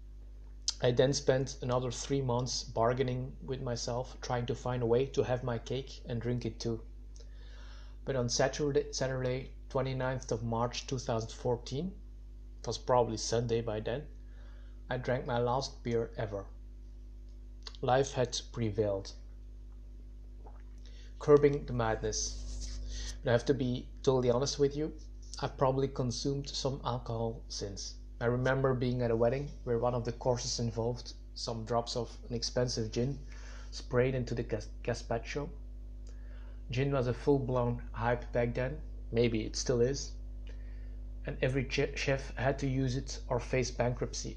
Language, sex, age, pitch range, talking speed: English, male, 30-49, 115-130 Hz, 145 wpm